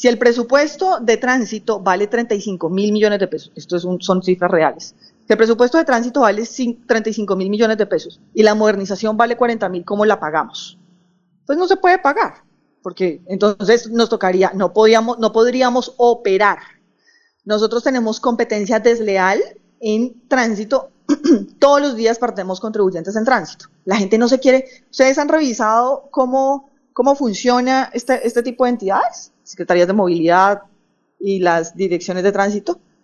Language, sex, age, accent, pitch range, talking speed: Spanish, female, 30-49, Colombian, 195-255 Hz, 160 wpm